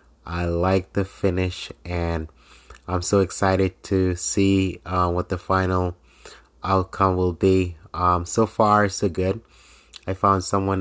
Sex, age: male, 20-39